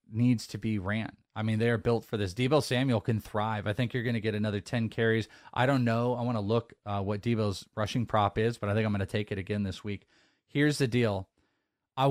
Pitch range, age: 110-140 Hz, 20-39